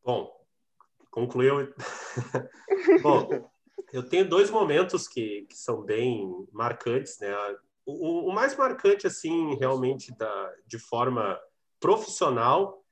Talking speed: 105 wpm